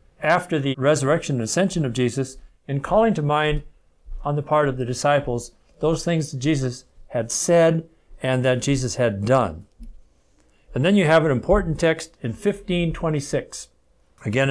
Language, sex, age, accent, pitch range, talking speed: English, male, 60-79, American, 120-165 Hz, 155 wpm